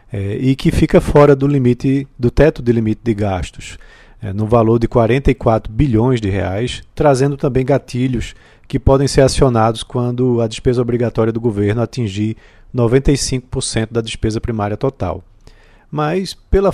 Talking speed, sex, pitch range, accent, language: 150 wpm, male, 110-130 Hz, Brazilian, Portuguese